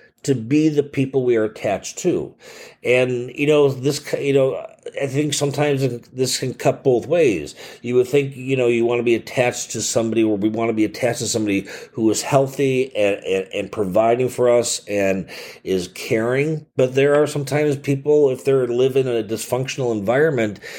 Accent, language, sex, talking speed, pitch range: American, English, male, 190 wpm, 110-135 Hz